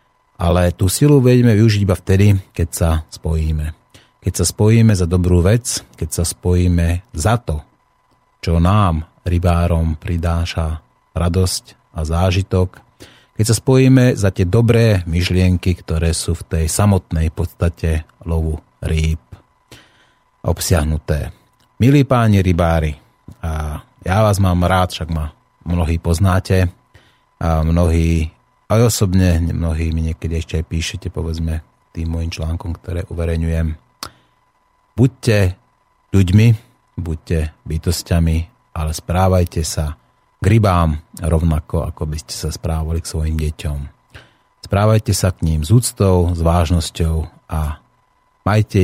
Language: Slovak